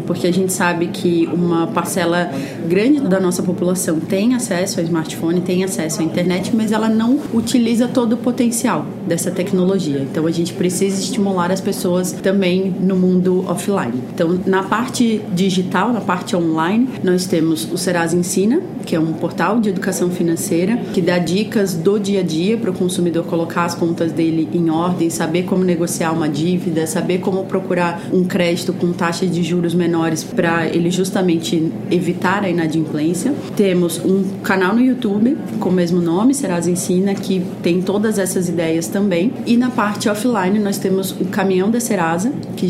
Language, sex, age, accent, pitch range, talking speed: Portuguese, female, 30-49, Brazilian, 175-200 Hz, 175 wpm